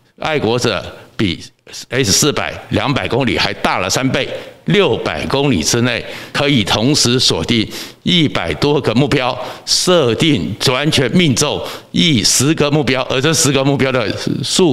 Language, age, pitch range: Chinese, 60-79, 115-145 Hz